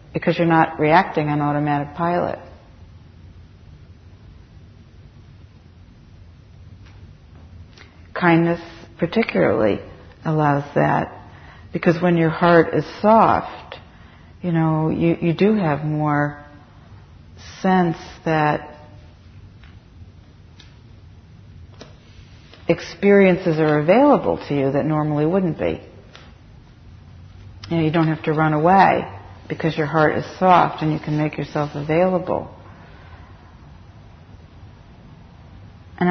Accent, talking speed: American, 90 wpm